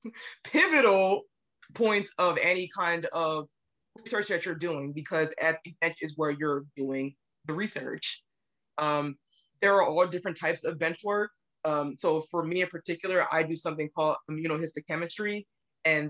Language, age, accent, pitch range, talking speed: English, 20-39, American, 150-170 Hz, 155 wpm